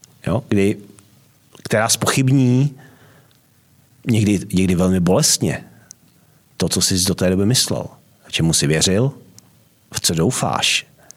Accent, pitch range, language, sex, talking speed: native, 95-120 Hz, Czech, male, 115 wpm